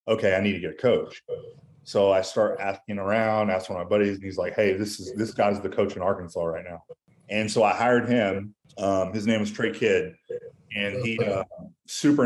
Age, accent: 30-49, American